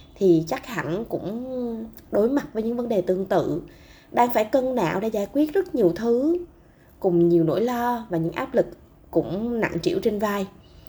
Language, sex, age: Vietnamese, female, 20-39